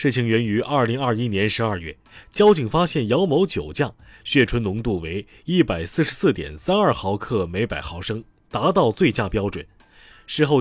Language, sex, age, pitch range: Chinese, male, 30-49, 100-140 Hz